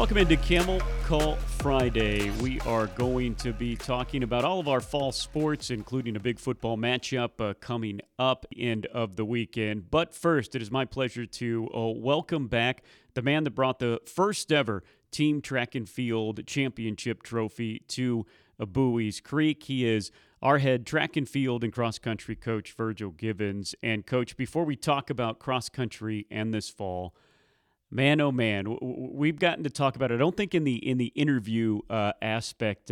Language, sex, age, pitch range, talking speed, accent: English, male, 40-59, 110-135 Hz, 180 wpm, American